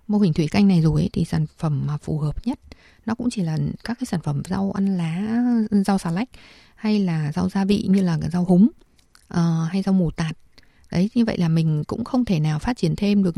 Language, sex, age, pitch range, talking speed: Vietnamese, female, 20-39, 170-210 Hz, 240 wpm